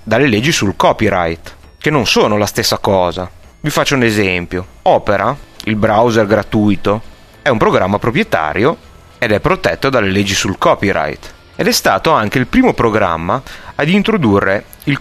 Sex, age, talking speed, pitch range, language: male, 30-49, 155 wpm, 95-115 Hz, Italian